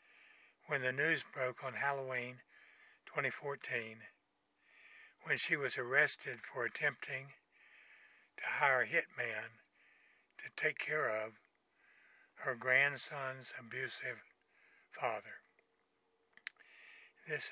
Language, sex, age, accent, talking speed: English, male, 60-79, American, 90 wpm